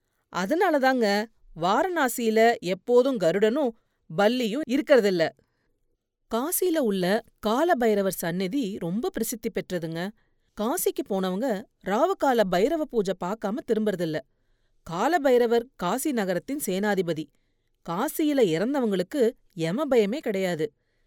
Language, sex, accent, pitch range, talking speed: Tamil, female, native, 185-255 Hz, 90 wpm